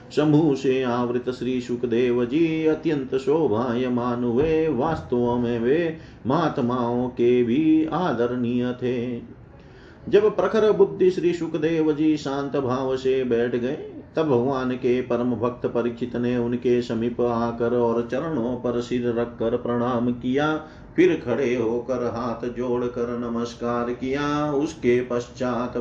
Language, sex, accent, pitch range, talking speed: Hindi, male, native, 120-145 Hz, 130 wpm